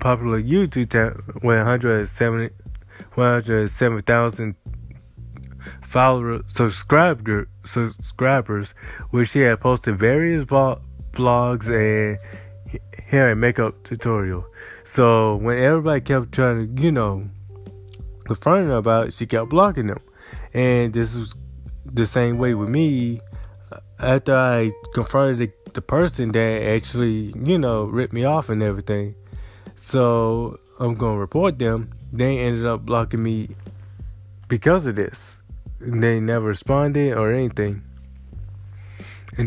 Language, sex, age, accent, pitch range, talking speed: English, male, 20-39, American, 105-125 Hz, 120 wpm